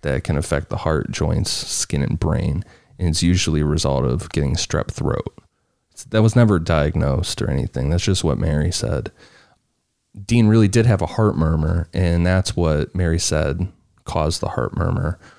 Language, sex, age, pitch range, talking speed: English, male, 30-49, 80-95 Hz, 175 wpm